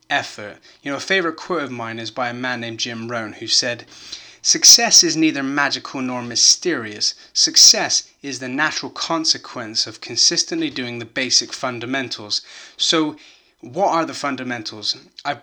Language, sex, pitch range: English, male, 115-165 Hz